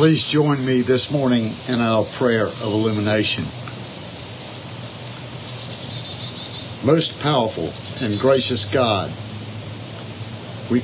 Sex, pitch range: male, 110-130 Hz